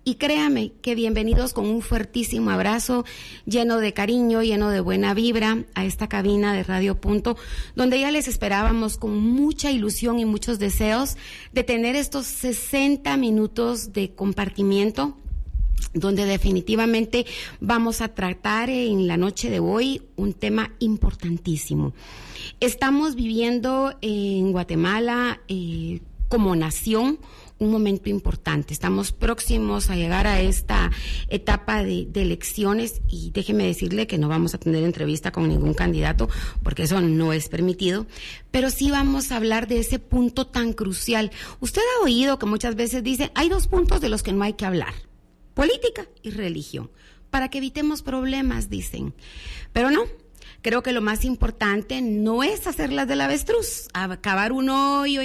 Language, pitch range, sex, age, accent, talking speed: English, 190-250 Hz, female, 30-49, Mexican, 150 wpm